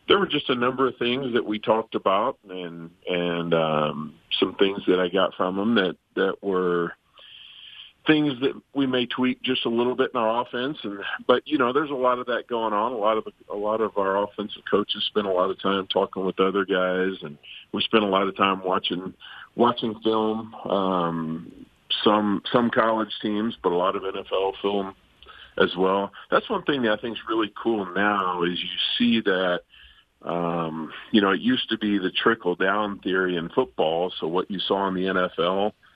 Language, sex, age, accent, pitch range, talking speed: English, male, 50-69, American, 90-110 Hz, 205 wpm